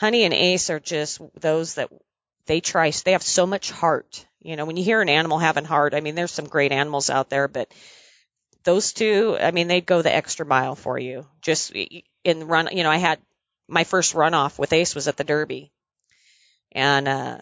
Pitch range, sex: 155-185 Hz, female